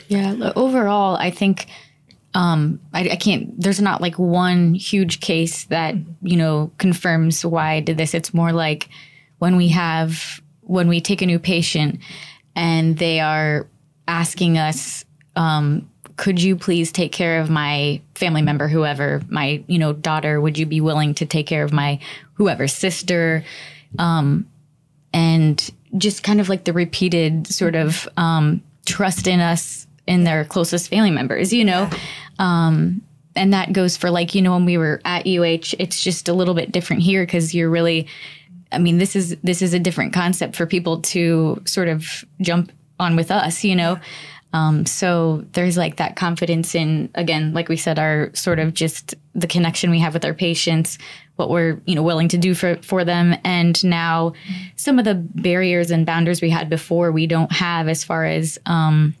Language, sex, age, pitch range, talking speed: English, female, 20-39, 155-180 Hz, 180 wpm